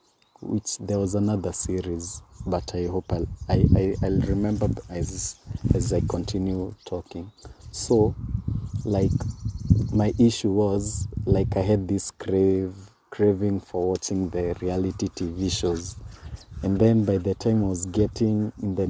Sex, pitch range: male, 90-105 Hz